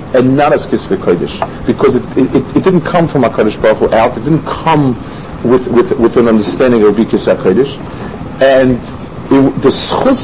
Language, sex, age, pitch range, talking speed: English, male, 50-69, 125-175 Hz, 175 wpm